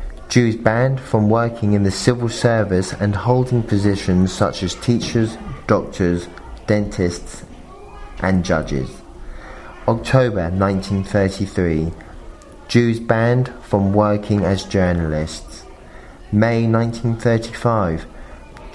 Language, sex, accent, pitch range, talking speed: English, male, British, 90-115 Hz, 90 wpm